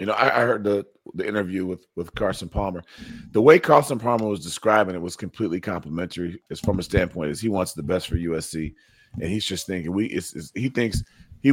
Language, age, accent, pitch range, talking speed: English, 30-49, American, 90-115 Hz, 225 wpm